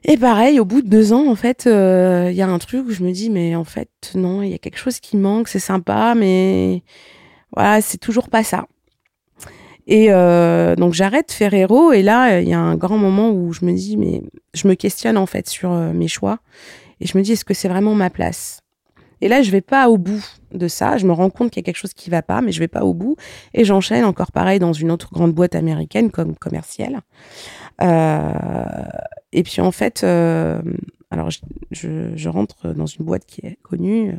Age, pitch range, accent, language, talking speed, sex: 20-39, 170-220 Hz, French, French, 235 wpm, female